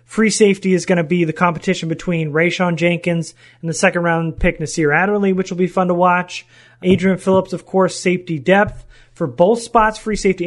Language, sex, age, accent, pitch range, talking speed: English, male, 30-49, American, 160-190 Hz, 195 wpm